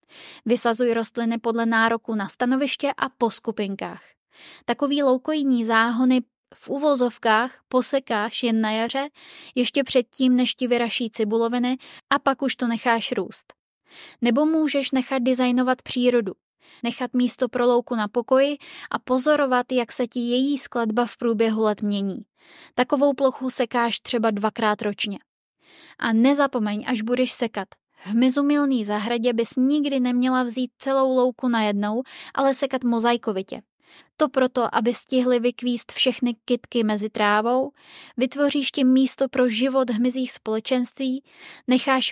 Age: 20-39